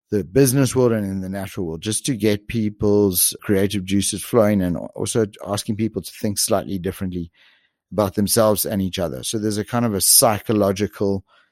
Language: English